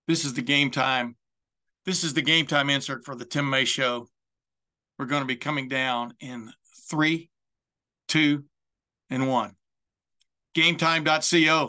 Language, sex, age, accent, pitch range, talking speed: English, male, 60-79, American, 140-170 Hz, 145 wpm